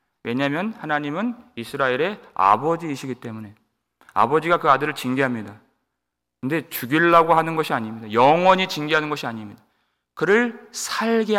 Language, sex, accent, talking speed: English, male, Korean, 105 wpm